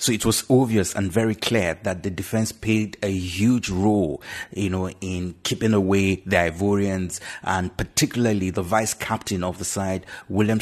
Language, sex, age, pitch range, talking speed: English, male, 30-49, 95-110 Hz, 170 wpm